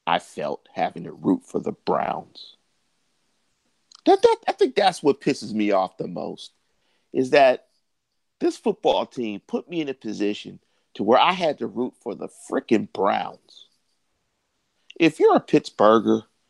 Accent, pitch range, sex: American, 140-210 Hz, male